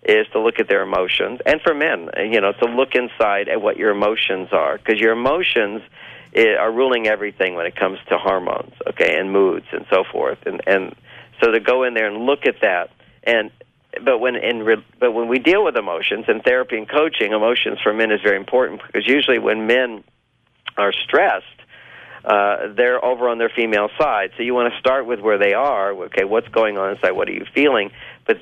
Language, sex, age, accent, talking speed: English, male, 50-69, American, 210 wpm